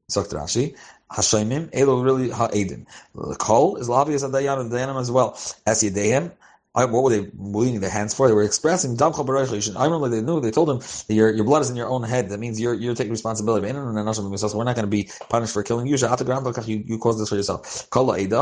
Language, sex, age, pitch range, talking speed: English, male, 30-49, 105-125 Hz, 175 wpm